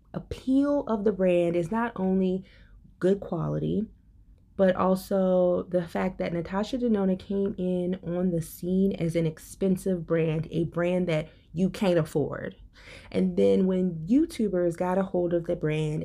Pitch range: 160-190 Hz